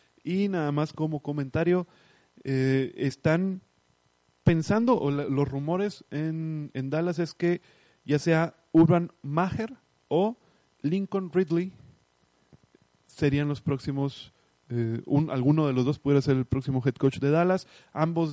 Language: Spanish